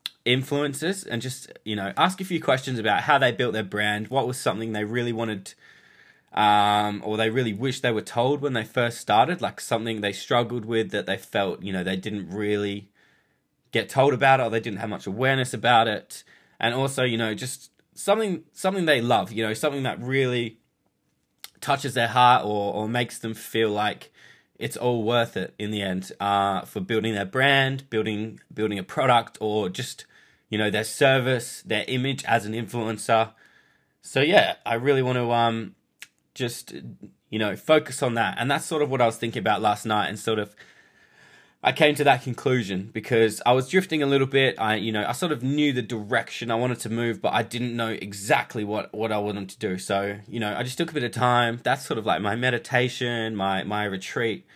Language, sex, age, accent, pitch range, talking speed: English, male, 20-39, Australian, 105-130 Hz, 210 wpm